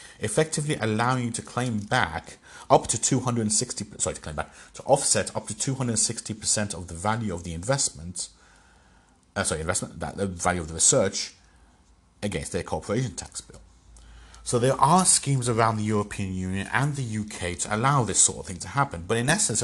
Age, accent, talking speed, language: 30-49, British, 185 wpm, English